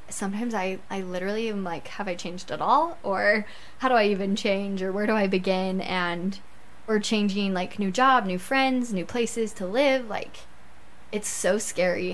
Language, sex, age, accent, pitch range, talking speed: English, female, 10-29, American, 190-220 Hz, 190 wpm